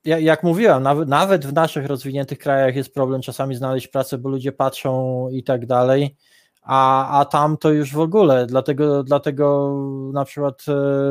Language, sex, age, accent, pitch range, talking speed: Polish, male, 20-39, native, 140-165 Hz, 160 wpm